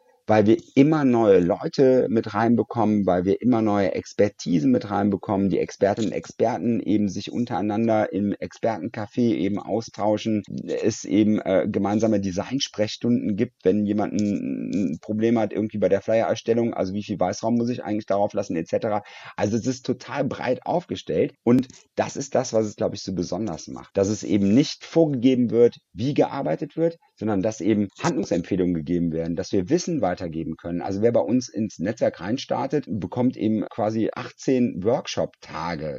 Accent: German